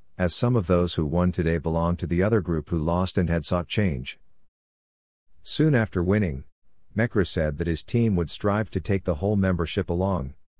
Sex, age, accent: male, 50-69, American